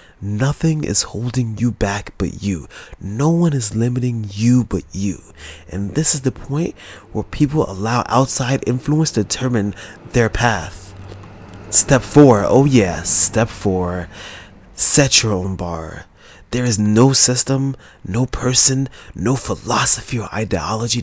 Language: English